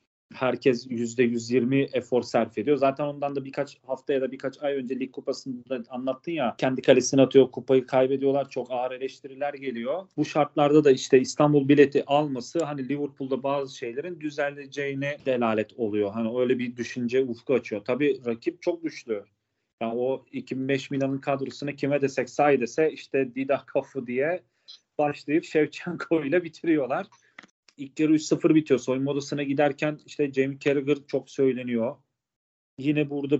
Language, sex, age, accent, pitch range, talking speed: Turkish, male, 40-59, native, 120-140 Hz, 150 wpm